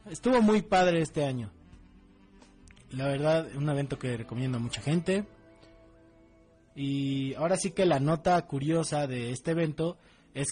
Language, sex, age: Spanish, male, 20-39